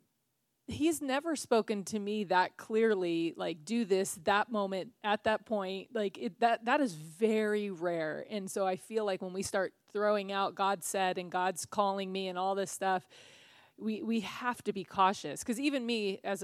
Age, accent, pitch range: 30-49, American, 185-225 Hz